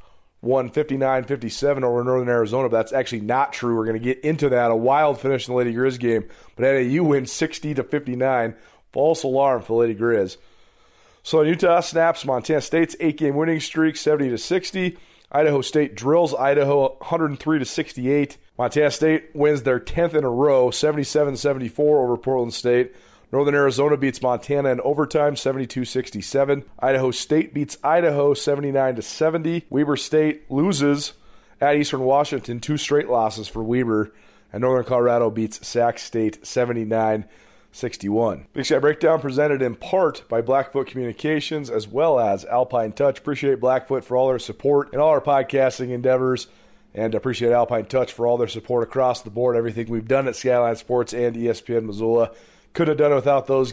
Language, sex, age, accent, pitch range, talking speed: English, male, 30-49, American, 120-145 Hz, 160 wpm